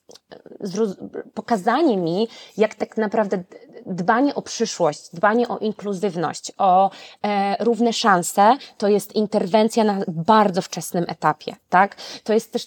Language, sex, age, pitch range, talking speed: Polish, female, 20-39, 185-225 Hz, 135 wpm